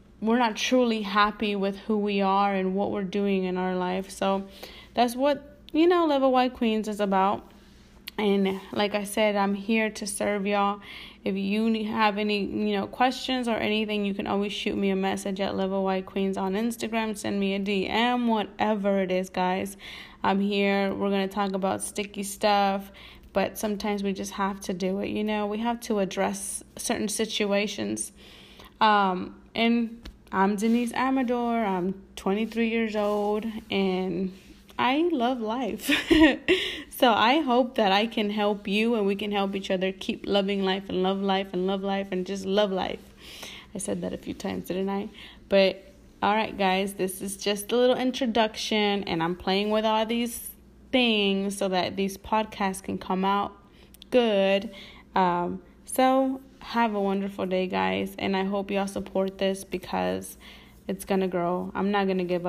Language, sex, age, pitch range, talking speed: English, female, 20-39, 190-220 Hz, 175 wpm